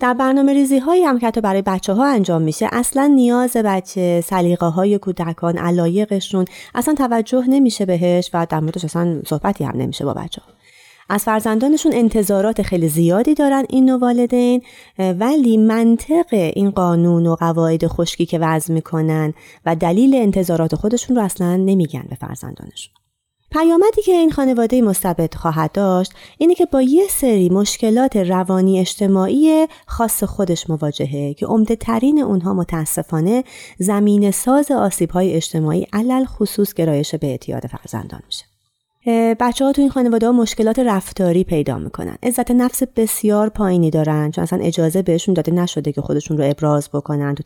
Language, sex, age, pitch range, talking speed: Persian, female, 30-49, 165-245 Hz, 155 wpm